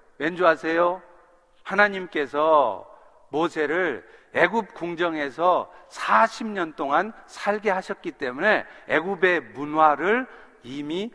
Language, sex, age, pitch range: Korean, male, 50-69, 175-230 Hz